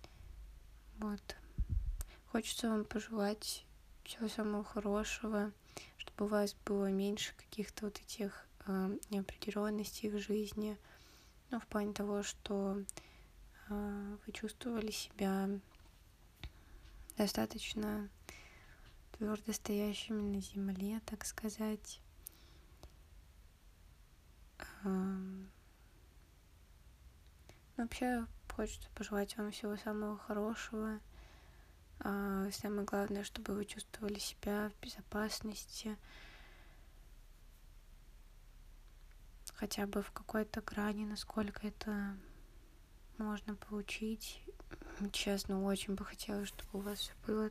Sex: female